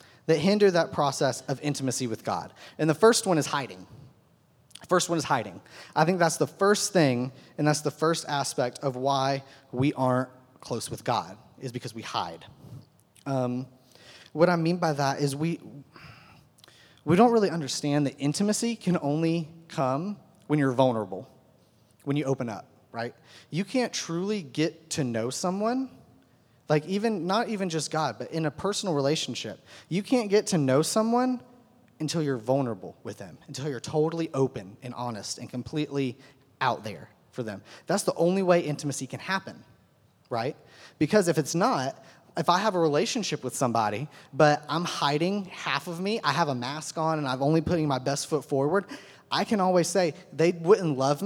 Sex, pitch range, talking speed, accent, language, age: male, 130-175 Hz, 175 wpm, American, English, 30-49